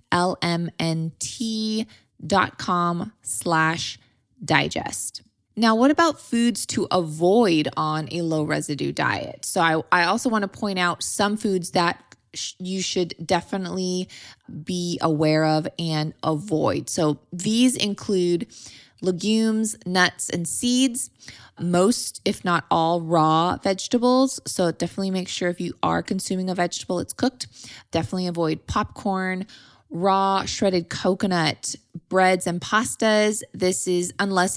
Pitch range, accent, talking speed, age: 165-200 Hz, American, 125 wpm, 20-39